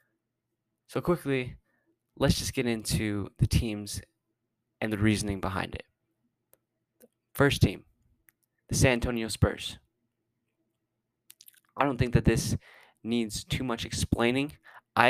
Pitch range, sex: 105-120 Hz, male